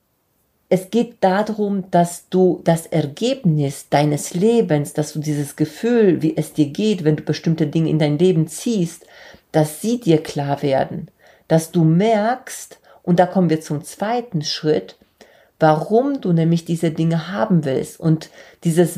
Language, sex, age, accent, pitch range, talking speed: German, female, 40-59, German, 160-190 Hz, 155 wpm